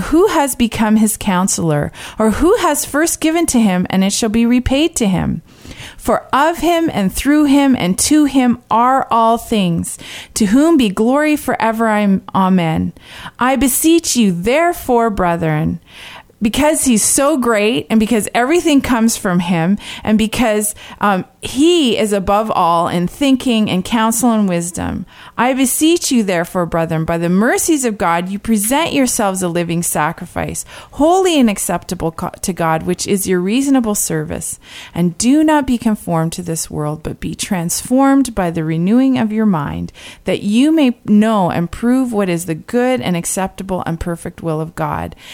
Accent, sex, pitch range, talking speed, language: American, female, 180-255 Hz, 165 wpm, English